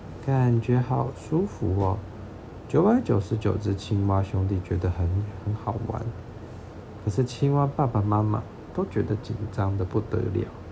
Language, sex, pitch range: Chinese, male, 105-140 Hz